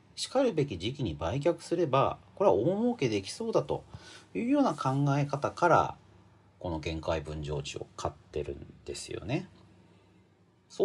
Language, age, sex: Japanese, 40-59, male